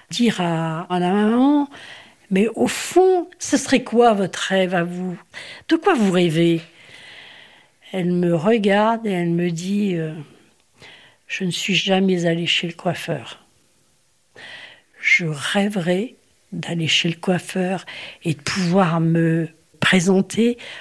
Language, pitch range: French, 170-215 Hz